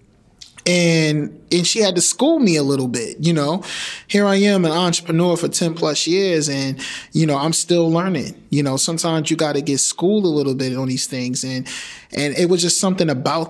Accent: American